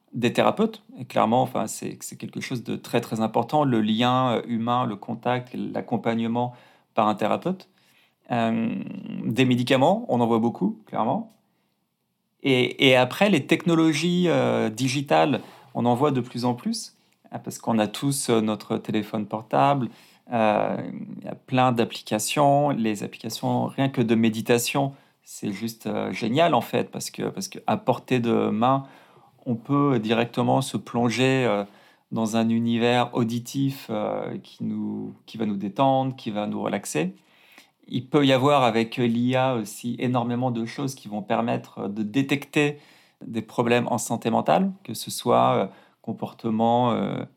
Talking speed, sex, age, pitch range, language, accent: 150 wpm, male, 40-59, 110-135 Hz, French, French